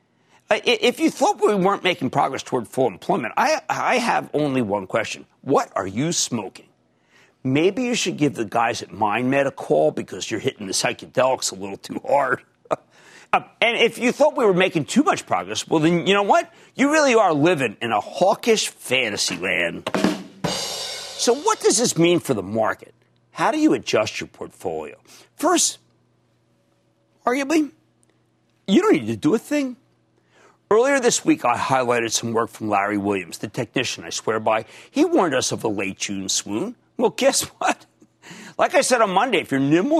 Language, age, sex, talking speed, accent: English, 50-69, male, 180 wpm, American